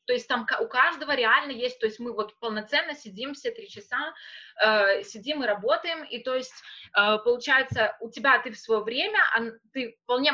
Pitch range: 215-270 Hz